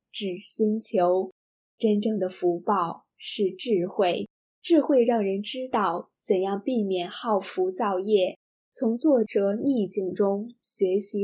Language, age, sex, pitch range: Chinese, 10-29, female, 195-230 Hz